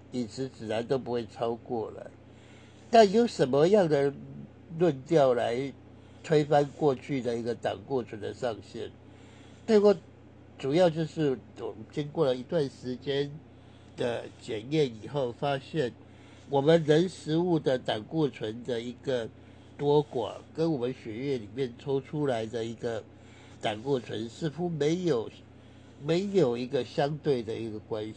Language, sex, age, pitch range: Chinese, male, 60-79, 110-145 Hz